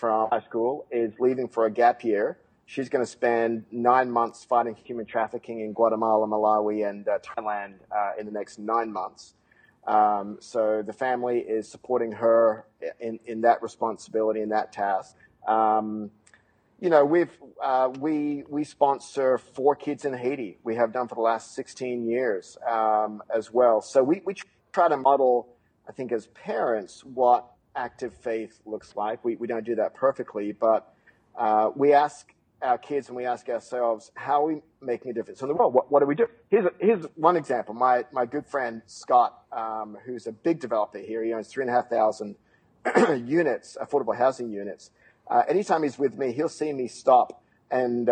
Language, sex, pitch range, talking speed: English, male, 110-130 Hz, 185 wpm